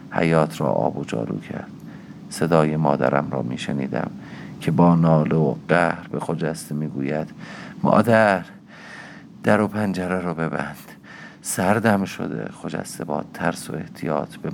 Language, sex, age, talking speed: Persian, male, 50-69, 140 wpm